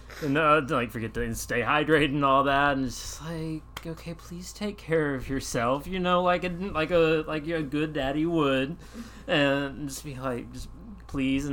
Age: 20-39